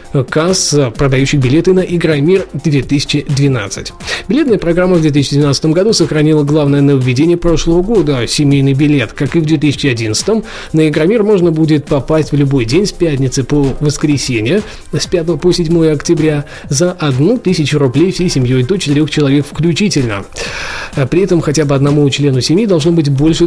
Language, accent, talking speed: Russian, native, 150 wpm